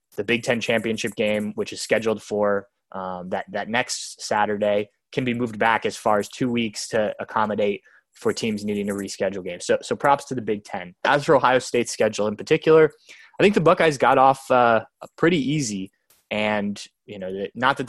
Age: 20-39